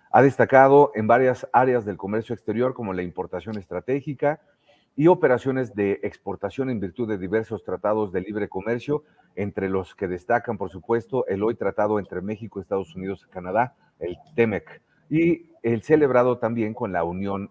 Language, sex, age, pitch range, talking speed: Spanish, male, 40-59, 100-125 Hz, 165 wpm